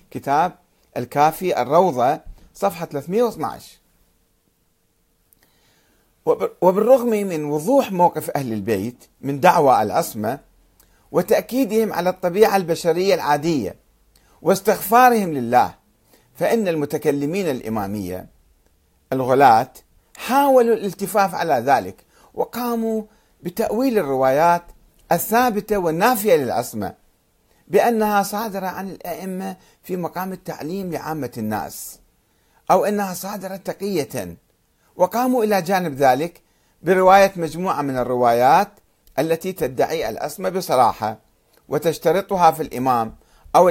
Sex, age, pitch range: male, 50-69, 145-210 Hz